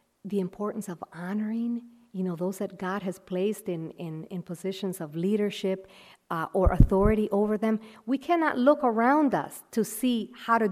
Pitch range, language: 190-250 Hz, English